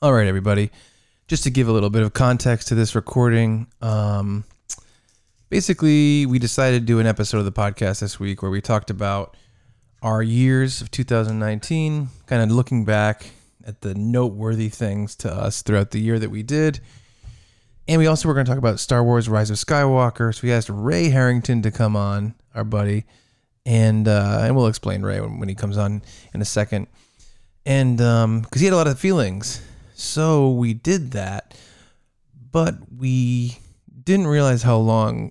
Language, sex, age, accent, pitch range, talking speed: English, male, 20-39, American, 105-125 Hz, 180 wpm